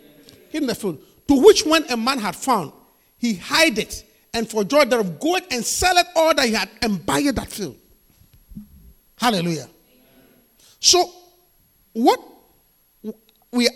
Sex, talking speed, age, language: male, 140 wpm, 50-69, English